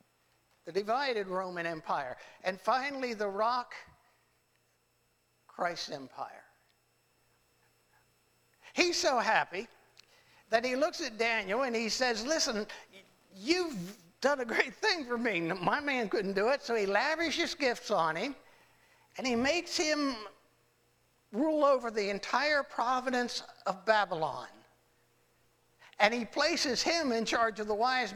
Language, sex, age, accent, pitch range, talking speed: English, male, 60-79, American, 195-275 Hz, 130 wpm